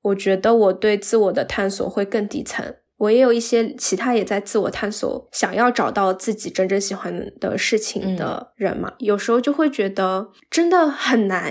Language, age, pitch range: Chinese, 10-29, 195-260 Hz